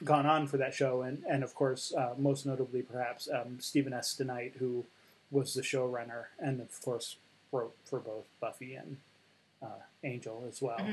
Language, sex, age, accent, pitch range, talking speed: English, male, 30-49, American, 135-160 Hz, 180 wpm